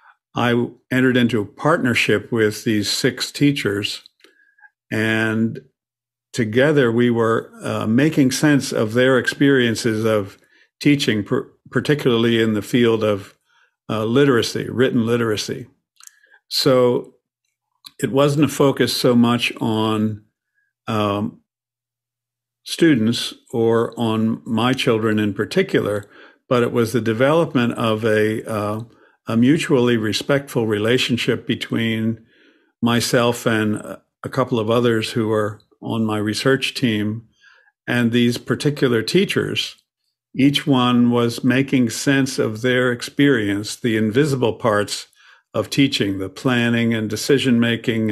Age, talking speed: 50-69, 115 wpm